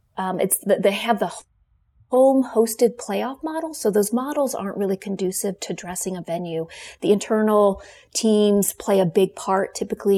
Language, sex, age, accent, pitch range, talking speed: English, female, 30-49, American, 185-225 Hz, 160 wpm